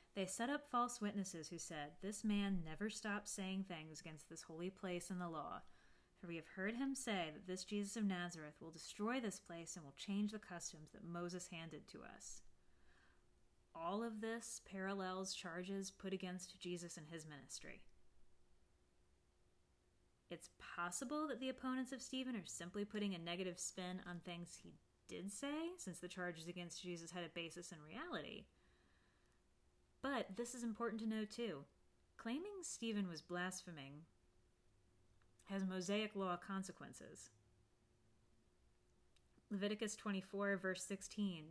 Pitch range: 155-205 Hz